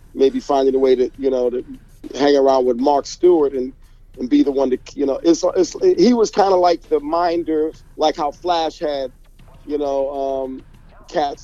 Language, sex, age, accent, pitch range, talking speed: English, male, 50-69, American, 130-170 Hz, 200 wpm